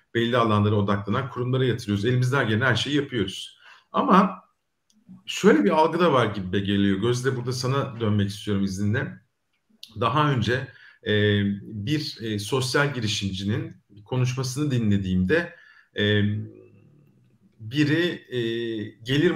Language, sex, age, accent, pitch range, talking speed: Turkish, male, 50-69, native, 105-150 Hz, 110 wpm